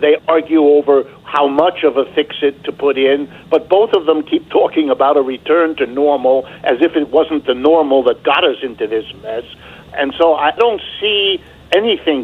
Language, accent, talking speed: English, American, 200 wpm